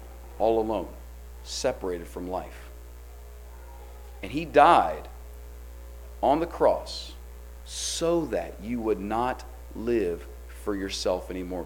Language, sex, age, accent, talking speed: English, male, 40-59, American, 105 wpm